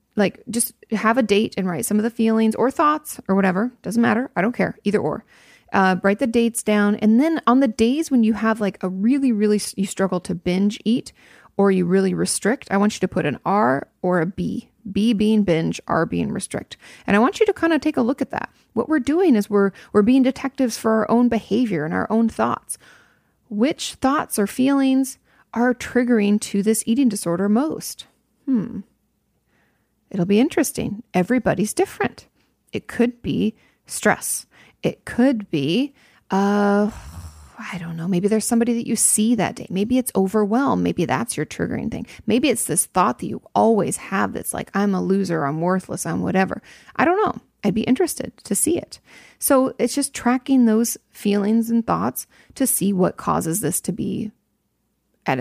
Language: English